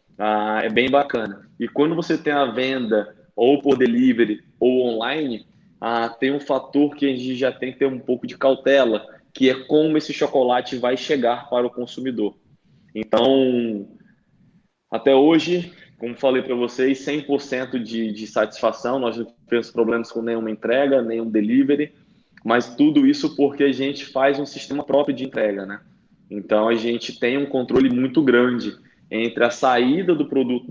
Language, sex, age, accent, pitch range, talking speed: Portuguese, male, 20-39, Brazilian, 120-145 Hz, 170 wpm